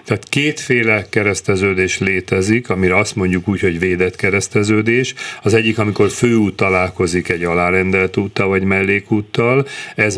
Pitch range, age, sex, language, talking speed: 95-115 Hz, 40-59, male, Hungarian, 130 wpm